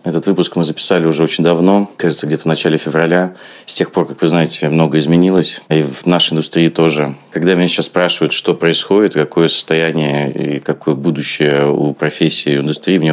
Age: 30-49